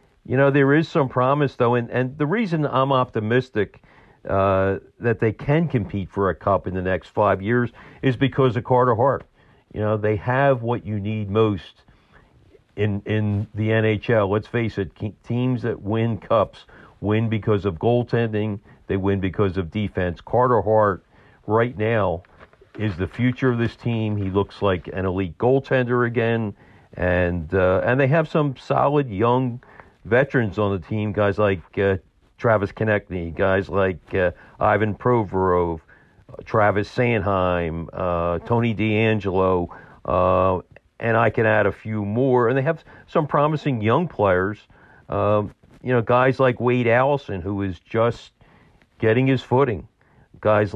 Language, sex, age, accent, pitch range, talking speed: English, male, 50-69, American, 100-125 Hz, 155 wpm